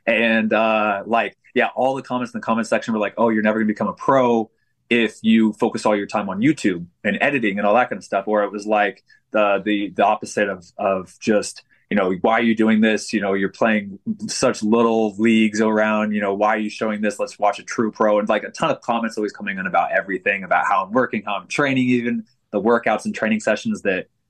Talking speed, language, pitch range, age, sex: 245 wpm, English, 105-120 Hz, 20-39, male